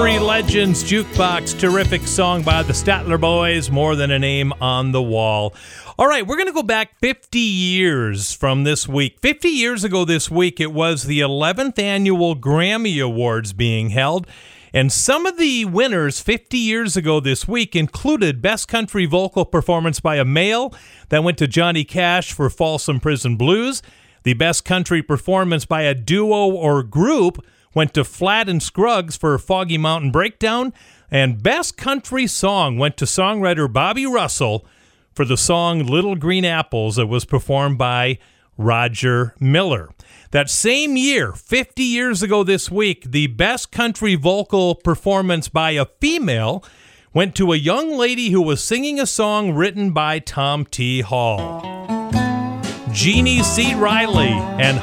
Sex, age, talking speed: male, 40-59, 155 wpm